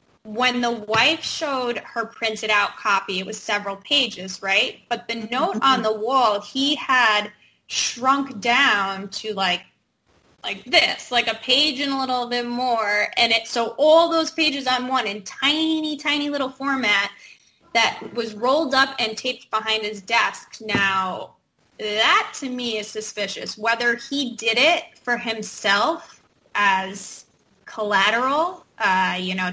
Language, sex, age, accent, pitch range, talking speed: English, female, 20-39, American, 200-260 Hz, 150 wpm